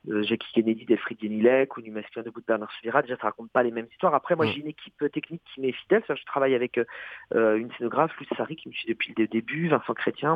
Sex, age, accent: male, 40-59, French